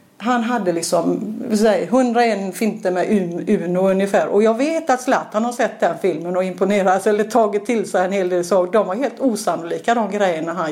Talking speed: 195 wpm